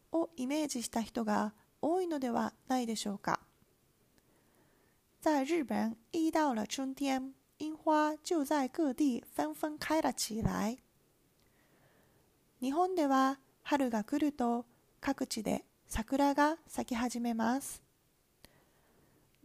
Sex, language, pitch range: female, Chinese, 235-300 Hz